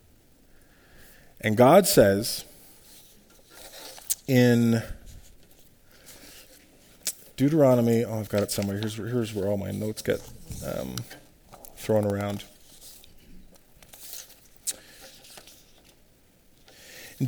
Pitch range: 110-140 Hz